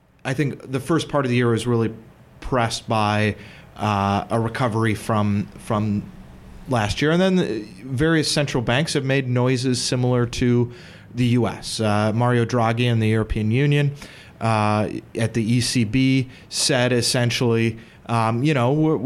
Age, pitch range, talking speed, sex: 30-49, 110-130 Hz, 155 wpm, male